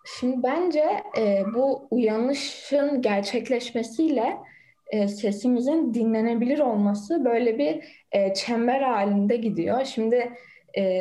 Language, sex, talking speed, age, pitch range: Turkish, female, 100 wpm, 10-29, 205-265 Hz